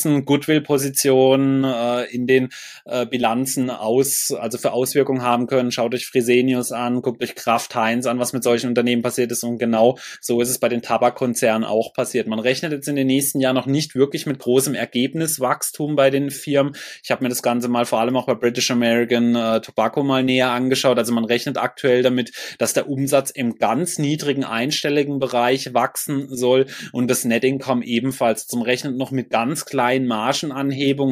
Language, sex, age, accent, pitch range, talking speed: German, male, 20-39, German, 125-140 Hz, 185 wpm